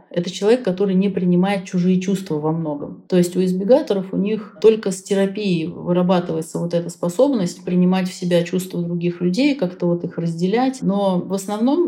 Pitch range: 170-195 Hz